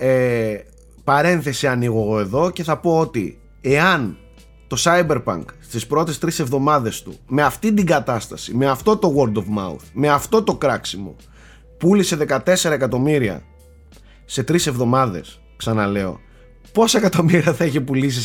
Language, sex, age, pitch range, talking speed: Greek, male, 30-49, 115-155 Hz, 140 wpm